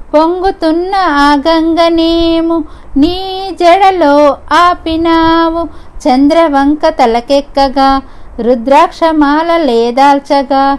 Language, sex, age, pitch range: Telugu, female, 50-69, 280-355 Hz